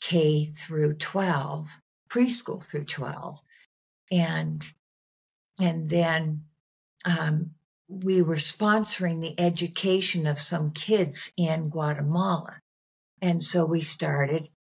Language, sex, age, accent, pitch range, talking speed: English, female, 60-79, American, 150-175 Hz, 100 wpm